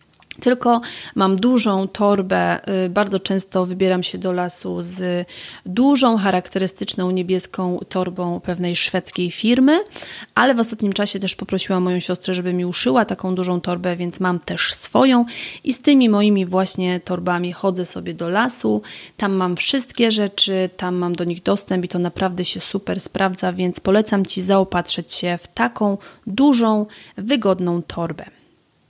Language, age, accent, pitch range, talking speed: Polish, 30-49, native, 180-225 Hz, 145 wpm